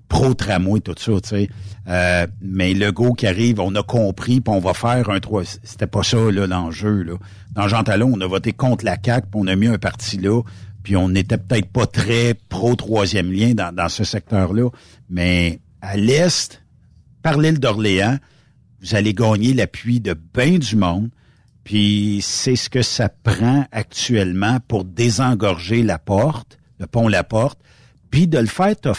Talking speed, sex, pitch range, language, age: 180 wpm, male, 100-125 Hz, French, 60-79